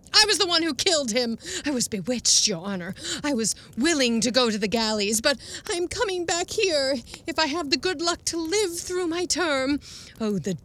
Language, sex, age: English, female, 30-49